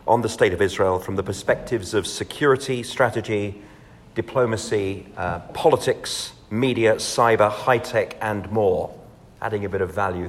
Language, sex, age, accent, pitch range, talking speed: English, male, 40-59, British, 95-115 Hz, 140 wpm